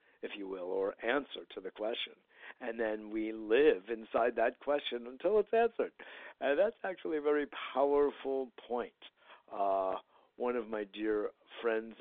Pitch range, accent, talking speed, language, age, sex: 110-160 Hz, American, 155 wpm, English, 50-69, male